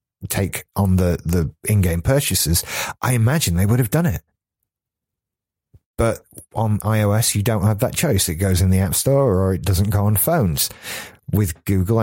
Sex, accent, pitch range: male, British, 85-115 Hz